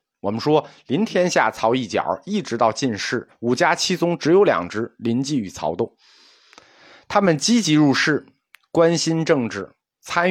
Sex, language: male, Chinese